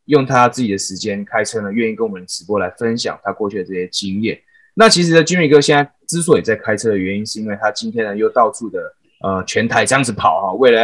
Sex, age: male, 20-39